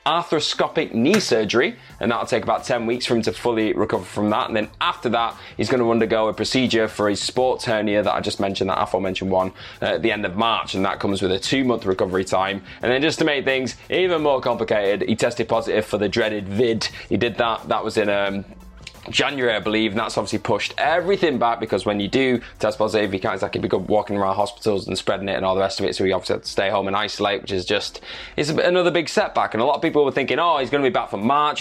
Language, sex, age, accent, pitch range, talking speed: English, male, 20-39, British, 105-125 Hz, 260 wpm